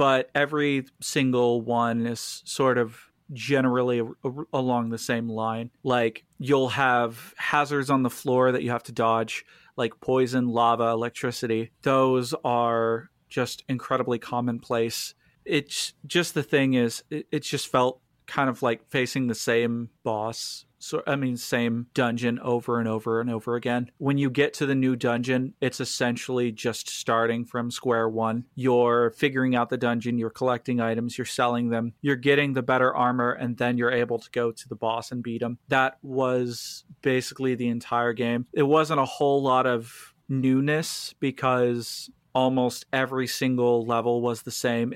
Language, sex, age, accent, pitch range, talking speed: English, male, 40-59, American, 120-135 Hz, 165 wpm